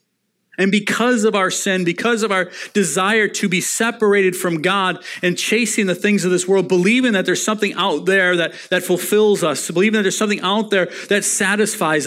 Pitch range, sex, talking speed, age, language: 150-205 Hz, male, 195 wpm, 40-59, English